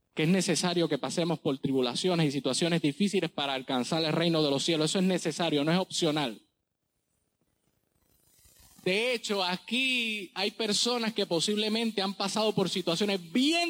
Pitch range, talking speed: 170-235 Hz, 155 wpm